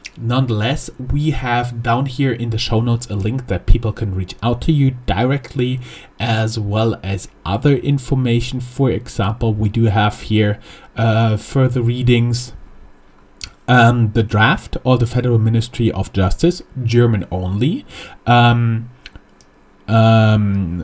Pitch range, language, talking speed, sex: 105-125 Hz, English, 130 wpm, male